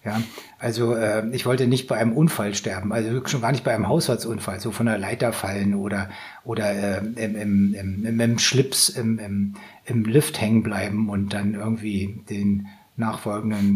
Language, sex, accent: German, male, German